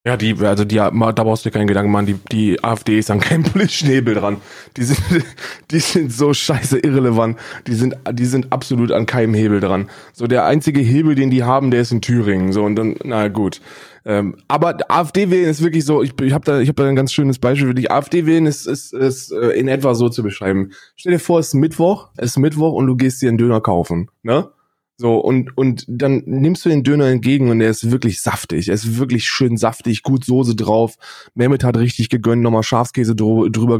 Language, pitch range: German, 110-140 Hz